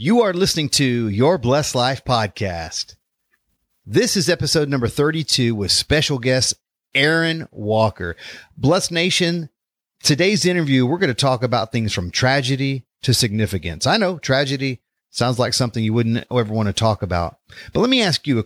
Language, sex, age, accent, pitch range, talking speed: English, male, 40-59, American, 105-145 Hz, 165 wpm